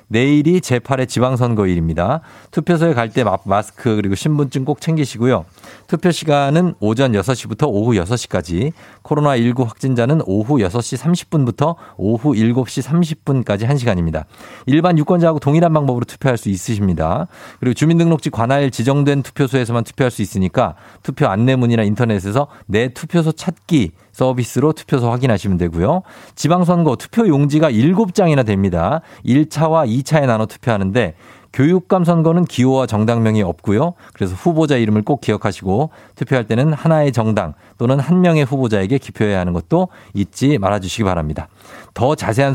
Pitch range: 105-150 Hz